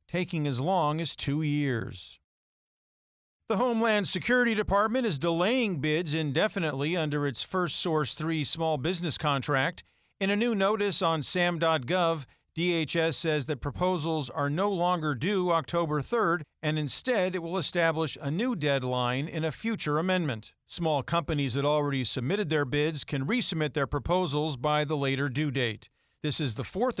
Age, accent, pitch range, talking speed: 50-69, American, 140-175 Hz, 155 wpm